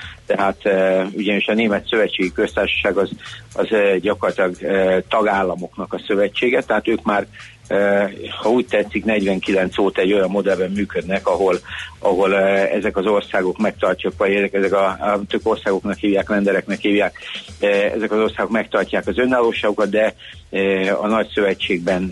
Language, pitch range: Hungarian, 95-115 Hz